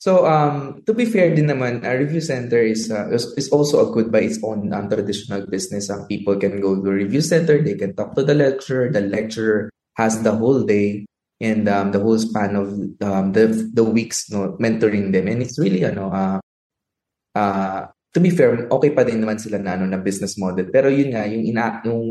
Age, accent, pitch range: 20-39, Filipino, 105-130 Hz